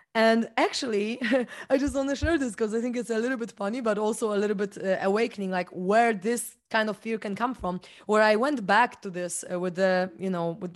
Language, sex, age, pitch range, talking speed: English, female, 20-39, 205-255 Hz, 245 wpm